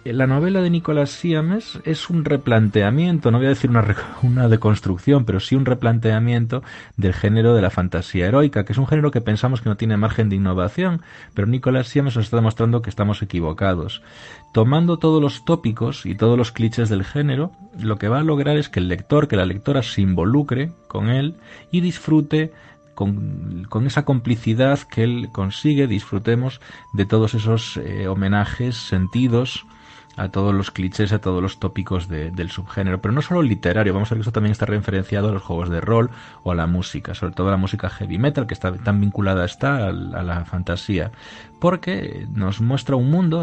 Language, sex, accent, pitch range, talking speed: Spanish, male, Spanish, 95-135 Hz, 195 wpm